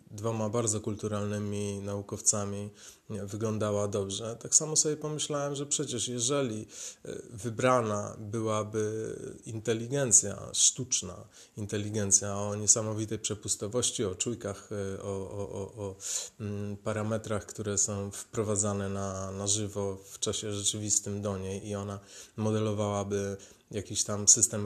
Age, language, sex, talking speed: 30-49, Polish, male, 110 wpm